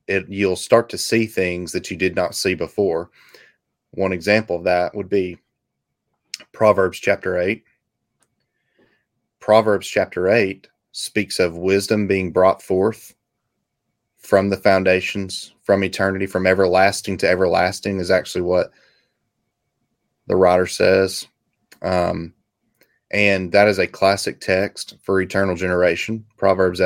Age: 30-49